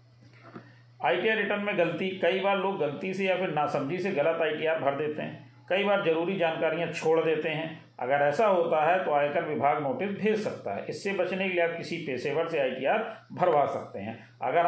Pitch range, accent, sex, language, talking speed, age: 145-180 Hz, native, male, Hindi, 200 wpm, 40-59